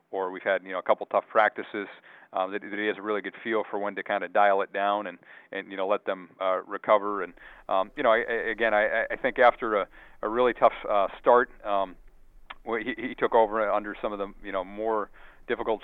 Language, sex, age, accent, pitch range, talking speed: English, male, 40-59, American, 100-110 Hz, 245 wpm